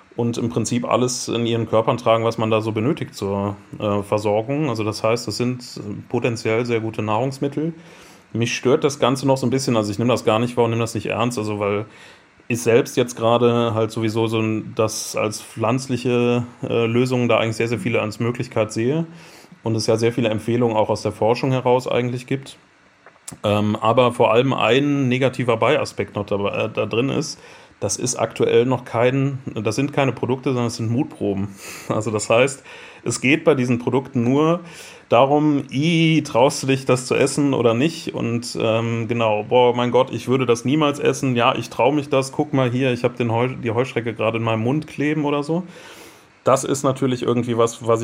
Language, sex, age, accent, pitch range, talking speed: German, male, 30-49, German, 110-130 Hz, 200 wpm